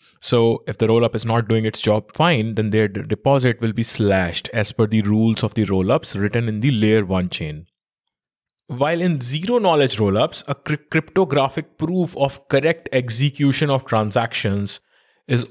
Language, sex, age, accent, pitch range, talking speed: English, male, 20-39, Indian, 110-135 Hz, 165 wpm